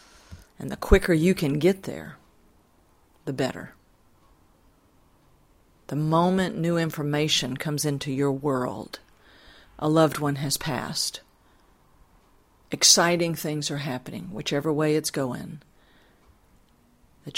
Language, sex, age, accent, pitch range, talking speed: English, female, 50-69, American, 130-160 Hz, 105 wpm